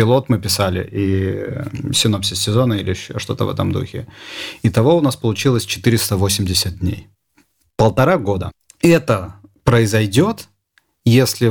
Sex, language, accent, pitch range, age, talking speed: male, Russian, native, 100-125 Hz, 40-59, 130 wpm